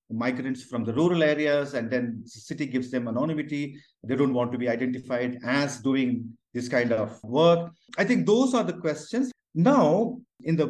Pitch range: 120-170 Hz